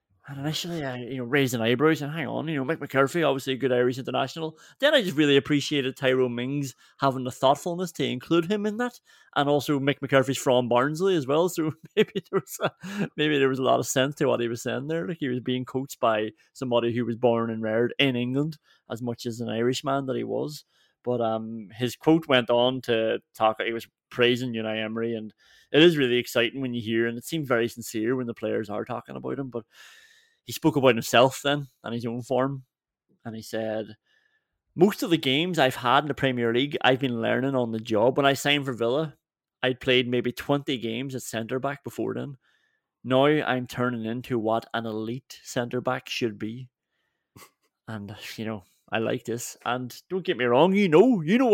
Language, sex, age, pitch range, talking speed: English, male, 30-49, 120-150 Hz, 215 wpm